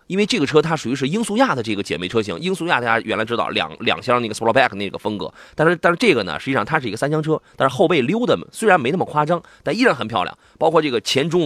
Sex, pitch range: male, 115-170 Hz